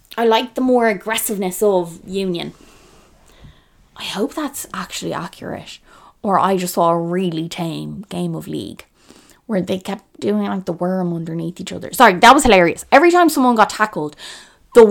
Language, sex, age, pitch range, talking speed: English, female, 20-39, 185-280 Hz, 170 wpm